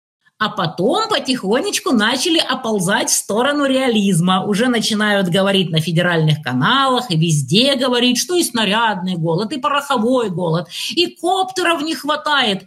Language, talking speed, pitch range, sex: Russian, 135 wpm, 195-325 Hz, female